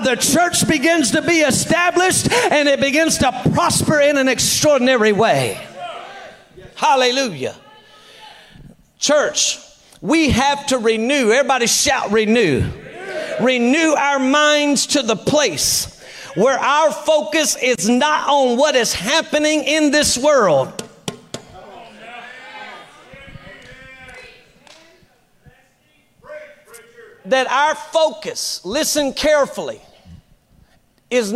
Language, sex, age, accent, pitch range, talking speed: English, male, 40-59, American, 260-310 Hz, 90 wpm